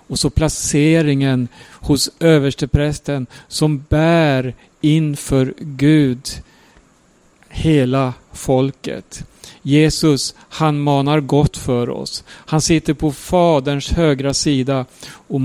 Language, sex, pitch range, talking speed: Swedish, male, 140-170 Hz, 95 wpm